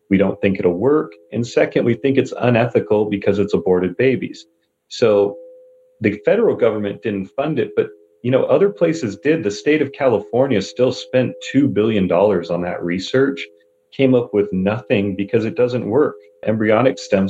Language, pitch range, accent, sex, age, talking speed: English, 95-135 Hz, American, male, 40-59, 170 wpm